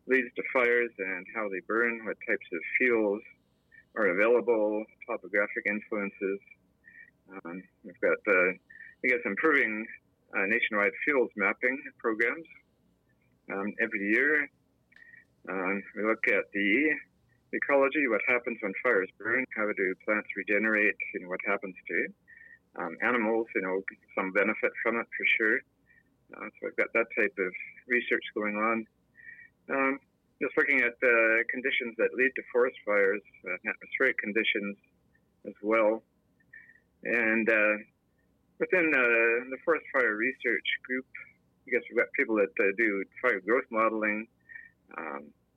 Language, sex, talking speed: English, male, 145 wpm